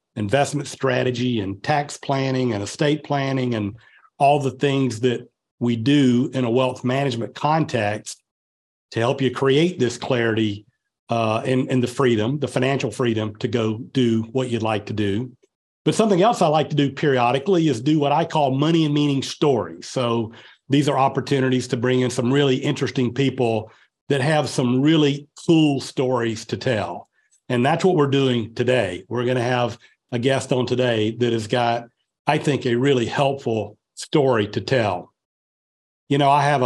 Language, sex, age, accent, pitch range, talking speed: English, male, 40-59, American, 115-145 Hz, 175 wpm